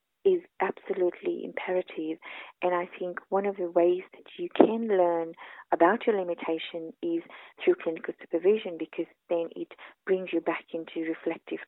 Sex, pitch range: female, 165-225 Hz